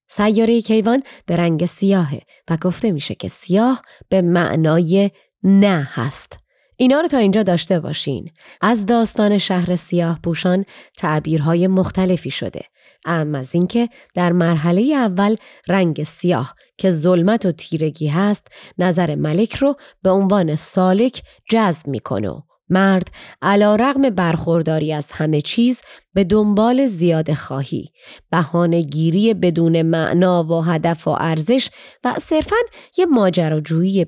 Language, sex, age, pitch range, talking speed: Persian, female, 20-39, 165-210 Hz, 125 wpm